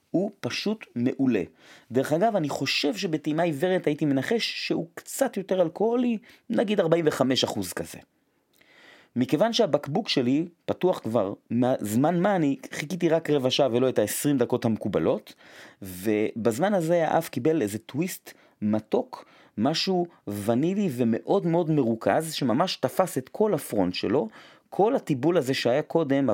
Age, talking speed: 30-49, 135 wpm